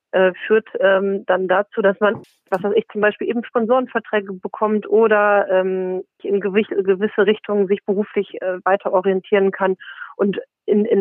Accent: German